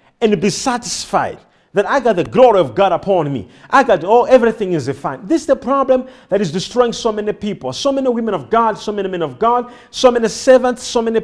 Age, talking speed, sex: 50-69, 235 wpm, male